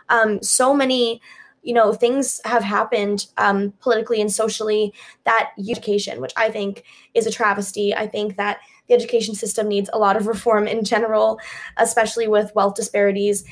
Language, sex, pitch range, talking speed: English, female, 205-230 Hz, 165 wpm